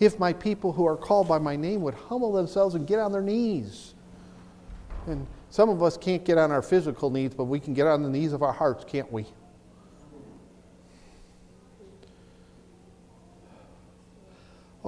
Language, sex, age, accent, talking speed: English, male, 50-69, American, 160 wpm